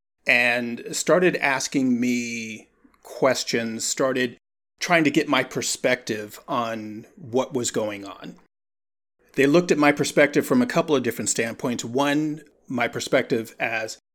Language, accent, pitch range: English, American, 115-150 Hz